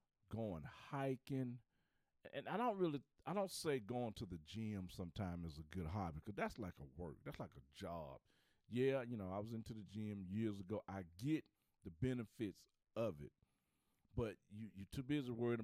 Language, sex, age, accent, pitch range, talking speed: English, male, 40-59, American, 100-150 Hz, 190 wpm